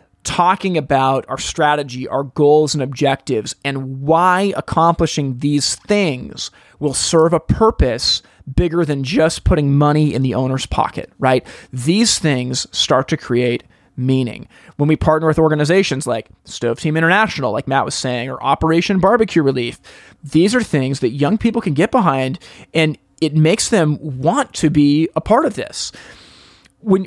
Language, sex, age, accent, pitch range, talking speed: English, male, 30-49, American, 135-170 Hz, 155 wpm